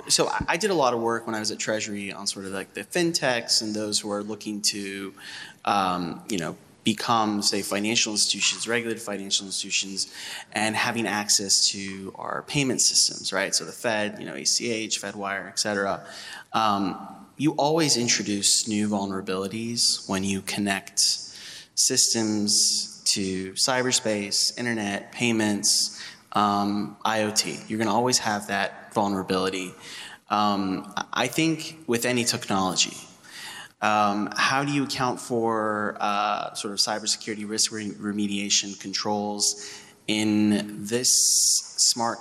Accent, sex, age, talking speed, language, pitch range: American, male, 20-39, 140 wpm, English, 100-115 Hz